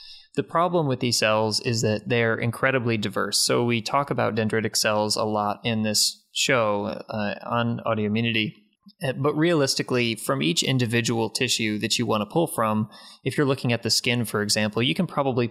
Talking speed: 180 wpm